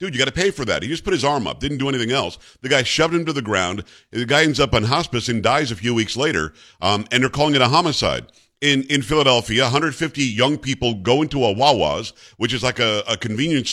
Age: 50-69